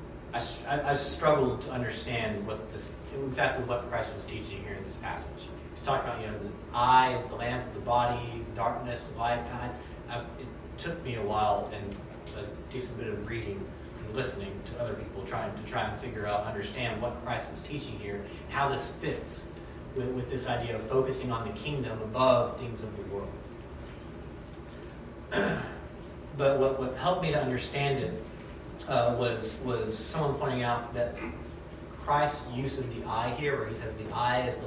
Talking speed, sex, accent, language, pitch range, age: 185 wpm, male, American, English, 105-130 Hz, 30-49